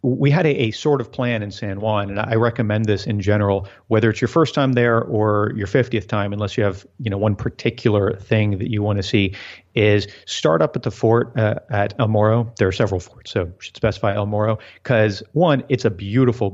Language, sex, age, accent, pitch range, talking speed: English, male, 40-59, American, 105-130 Hz, 230 wpm